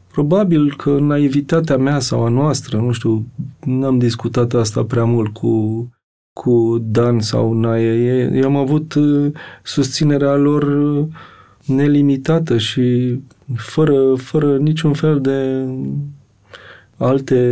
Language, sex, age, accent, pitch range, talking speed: Romanian, male, 30-49, native, 115-145 Hz, 110 wpm